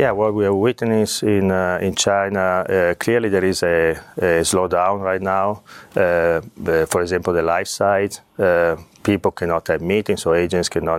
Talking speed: 175 wpm